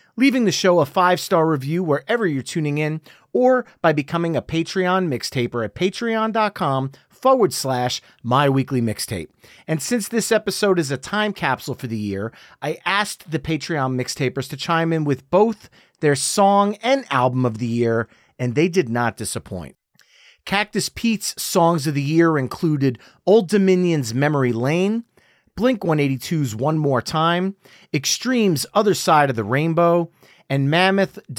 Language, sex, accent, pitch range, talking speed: English, male, American, 130-185 Hz, 145 wpm